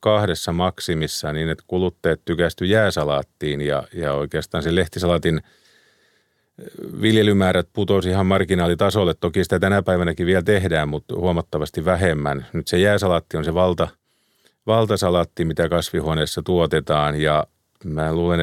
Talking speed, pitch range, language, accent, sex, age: 120 wpm, 80-95 Hz, Finnish, native, male, 40-59